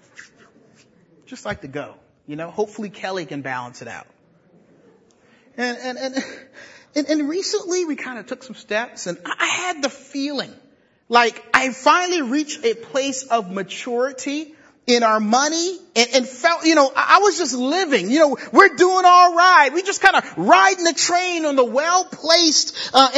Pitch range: 250-360 Hz